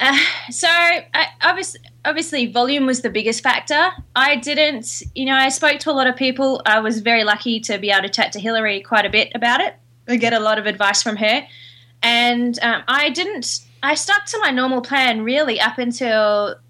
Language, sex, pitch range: English, female, 190-240 Hz